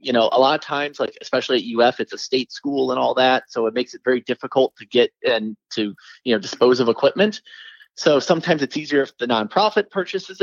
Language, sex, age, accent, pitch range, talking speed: English, male, 30-49, American, 125-160 Hz, 230 wpm